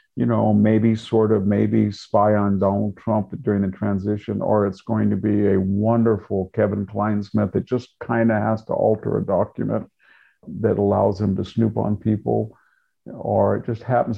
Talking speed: 180 wpm